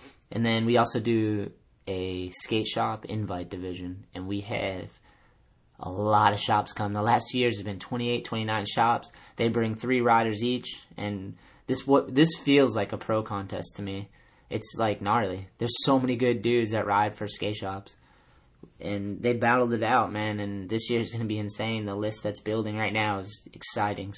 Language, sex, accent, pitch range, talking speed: English, male, American, 105-120 Hz, 195 wpm